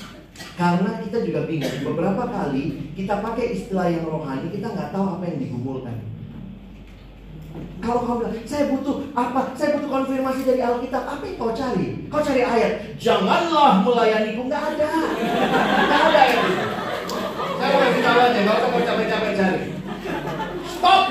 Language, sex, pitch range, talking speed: Indonesian, male, 200-265 Hz, 145 wpm